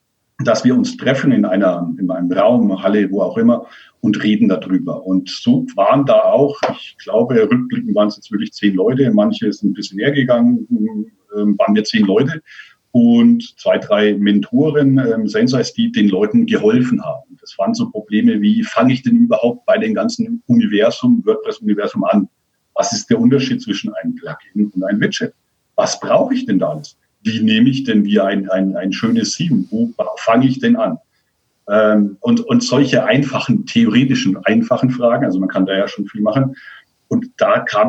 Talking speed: 180 wpm